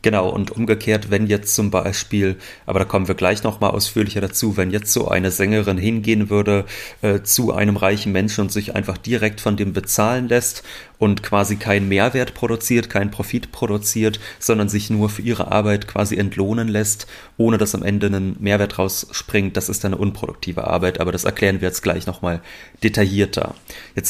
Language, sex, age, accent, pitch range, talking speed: German, male, 30-49, German, 100-115 Hz, 180 wpm